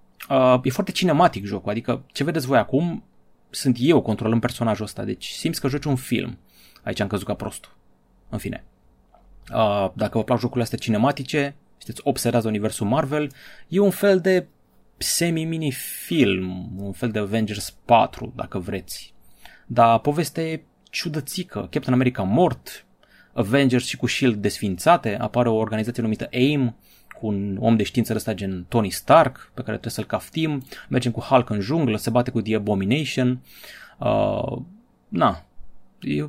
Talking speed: 155 wpm